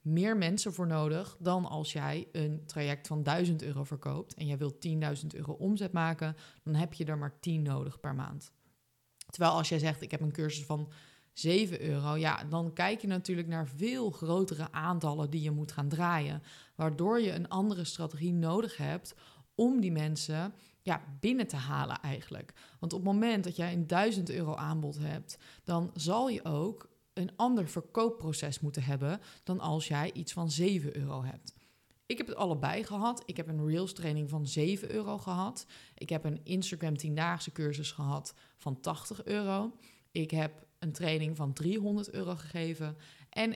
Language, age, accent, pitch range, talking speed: Dutch, 20-39, Dutch, 150-185 Hz, 180 wpm